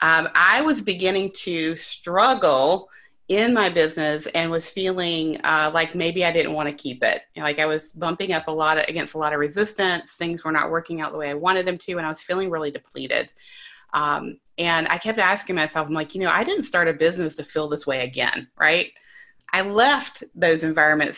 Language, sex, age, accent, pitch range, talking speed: English, female, 30-49, American, 155-205 Hz, 220 wpm